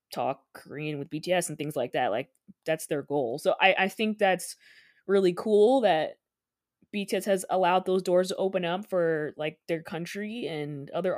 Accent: American